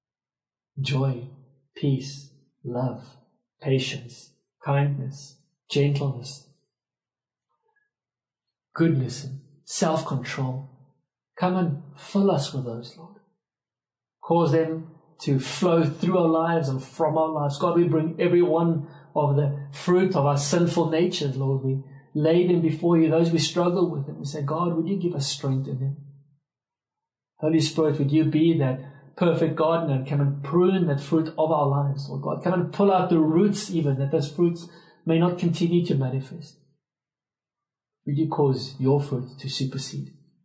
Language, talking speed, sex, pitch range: English, 145 wpm, male, 135-165 Hz